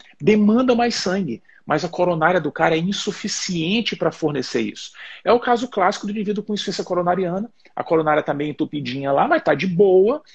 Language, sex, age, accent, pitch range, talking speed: Portuguese, male, 40-59, Brazilian, 170-255 Hz, 190 wpm